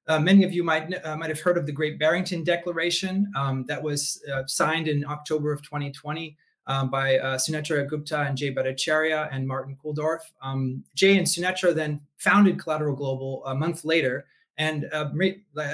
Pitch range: 140-170 Hz